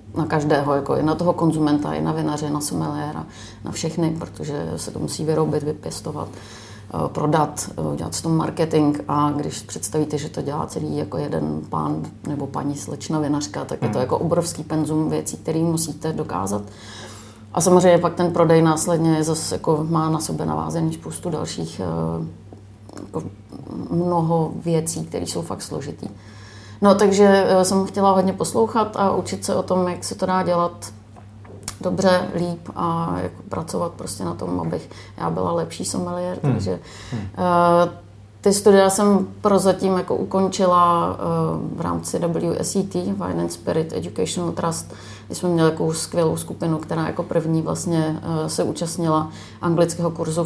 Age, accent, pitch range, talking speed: 30-49, native, 105-175 Hz, 150 wpm